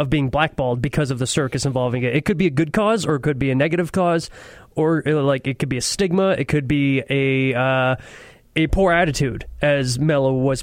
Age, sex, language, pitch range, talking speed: 20-39, male, English, 130-155 Hz, 230 wpm